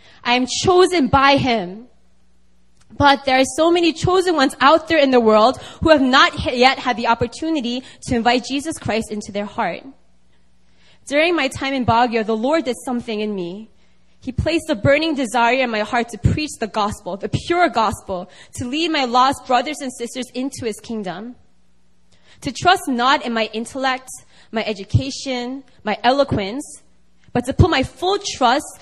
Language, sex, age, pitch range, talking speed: English, female, 20-39, 225-290 Hz, 175 wpm